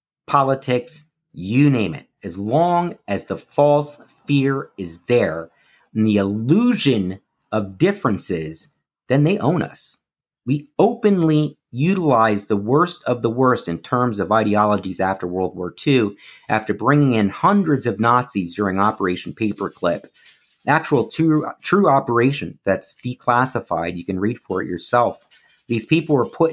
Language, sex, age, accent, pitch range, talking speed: English, male, 50-69, American, 105-145 Hz, 140 wpm